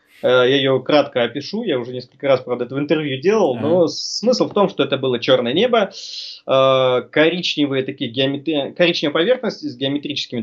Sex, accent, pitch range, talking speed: male, native, 125-170 Hz, 160 wpm